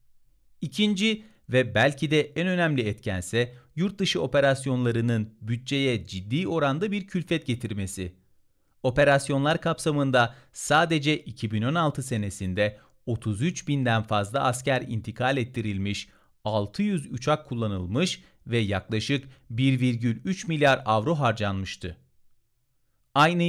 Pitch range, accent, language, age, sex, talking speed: 115-155 Hz, native, Turkish, 40-59, male, 90 wpm